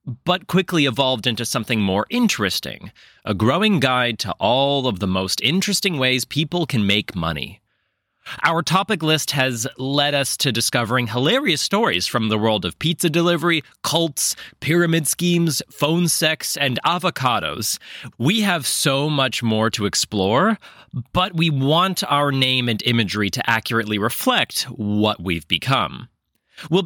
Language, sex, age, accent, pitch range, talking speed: English, male, 30-49, American, 105-160 Hz, 145 wpm